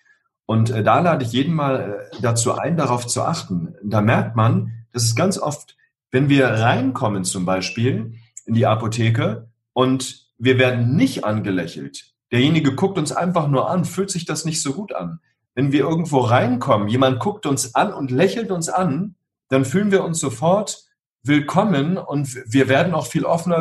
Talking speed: 175 wpm